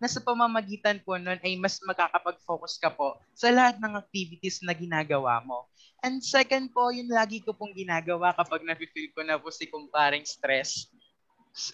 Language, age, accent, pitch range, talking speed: Filipino, 20-39, native, 155-210 Hz, 175 wpm